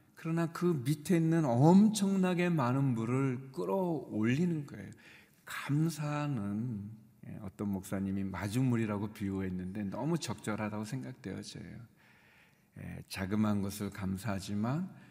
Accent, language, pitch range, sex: native, Korean, 105-155 Hz, male